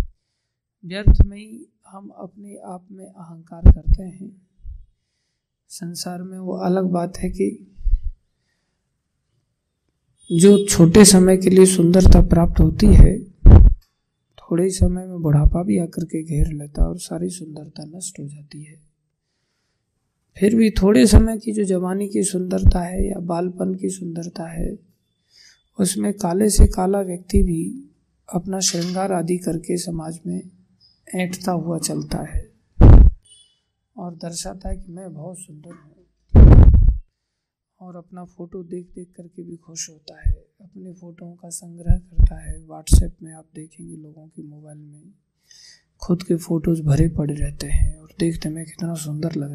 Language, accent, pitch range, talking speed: Hindi, native, 150-185 Hz, 145 wpm